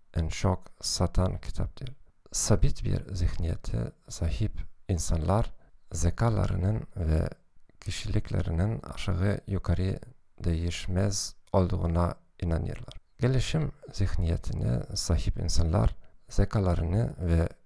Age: 50-69